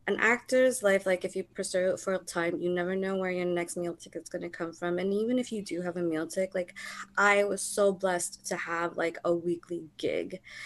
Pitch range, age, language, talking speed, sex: 175-200 Hz, 20-39, English, 240 wpm, female